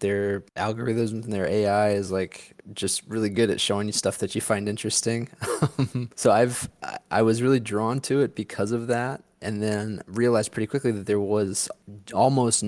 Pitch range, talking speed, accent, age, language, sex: 100-115 Hz, 180 wpm, American, 20-39, English, male